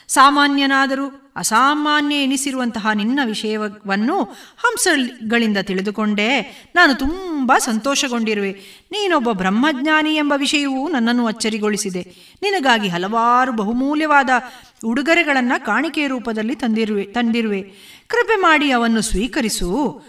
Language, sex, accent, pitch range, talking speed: Kannada, female, native, 205-285 Hz, 85 wpm